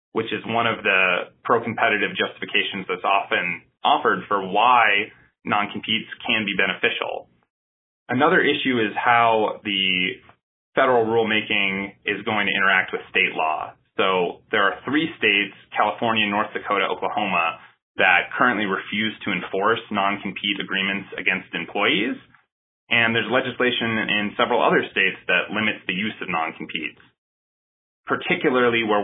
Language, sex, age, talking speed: English, male, 30-49, 130 wpm